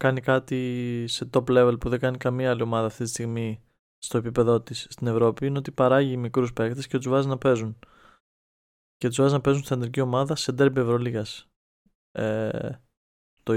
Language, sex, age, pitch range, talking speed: Greek, male, 20-39, 115-130 Hz, 180 wpm